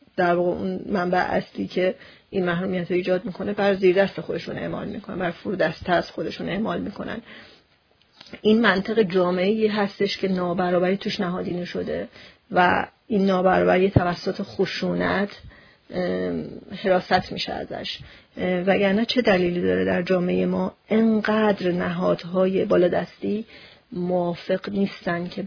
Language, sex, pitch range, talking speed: Persian, female, 180-200 Hz, 125 wpm